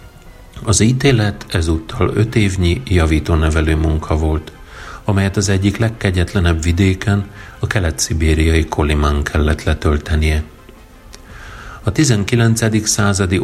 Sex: male